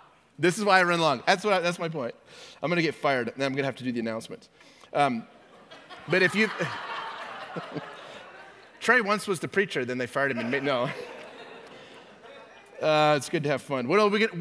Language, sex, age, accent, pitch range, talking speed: English, male, 30-49, American, 135-200 Hz, 205 wpm